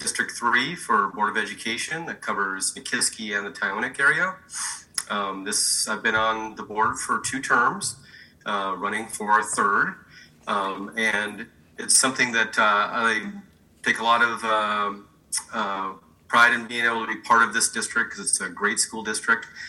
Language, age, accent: English, 30-49, American